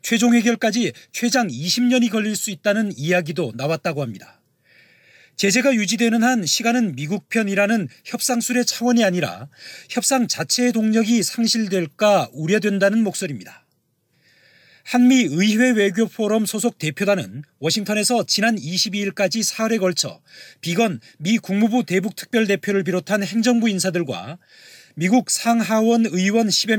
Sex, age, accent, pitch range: male, 40-59, native, 180-230 Hz